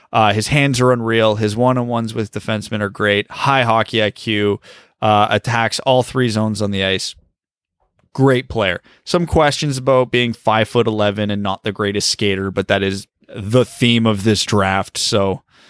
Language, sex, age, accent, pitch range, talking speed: English, male, 30-49, American, 105-130 Hz, 170 wpm